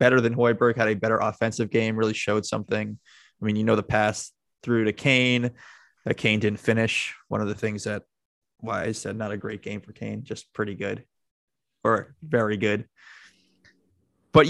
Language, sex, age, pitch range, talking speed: English, male, 20-39, 105-130 Hz, 190 wpm